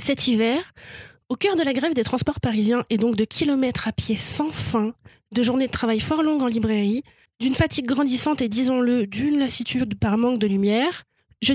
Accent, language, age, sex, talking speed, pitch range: French, French, 20-39, female, 195 wpm, 225-290 Hz